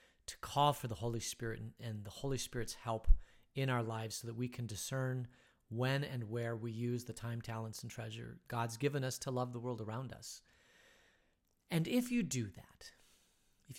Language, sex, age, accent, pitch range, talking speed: English, male, 40-59, American, 115-140 Hz, 190 wpm